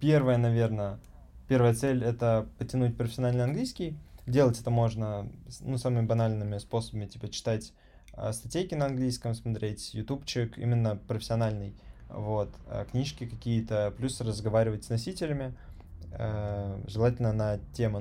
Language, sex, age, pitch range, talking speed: Russian, male, 20-39, 110-135 Hz, 125 wpm